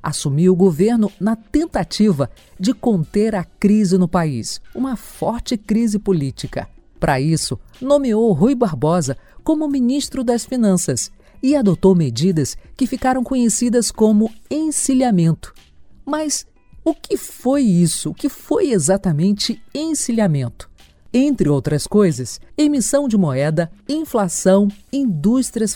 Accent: Brazilian